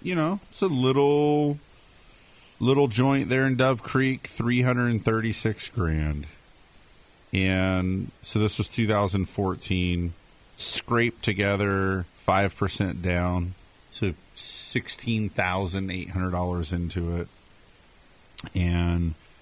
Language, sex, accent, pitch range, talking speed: English, male, American, 90-115 Hz, 95 wpm